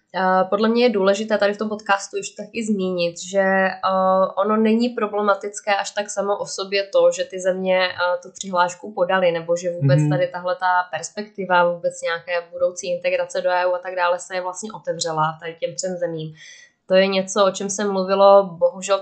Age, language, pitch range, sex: 20-39, Czech, 175-200 Hz, female